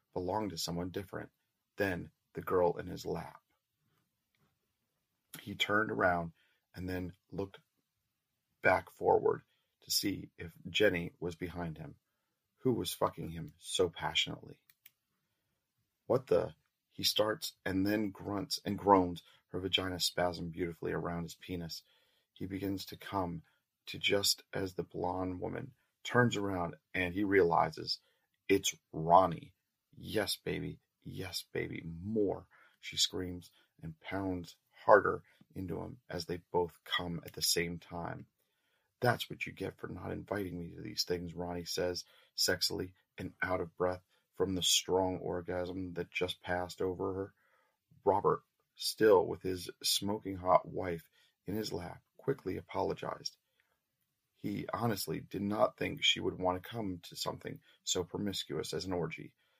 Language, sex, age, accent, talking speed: English, male, 40-59, American, 140 wpm